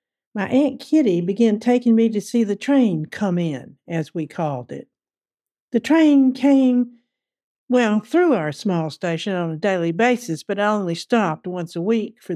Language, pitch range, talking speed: English, 165-235 Hz, 175 wpm